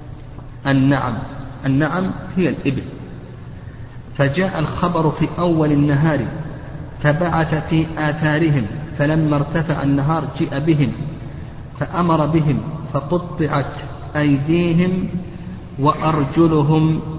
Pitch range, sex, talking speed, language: 130-160 Hz, male, 75 wpm, Arabic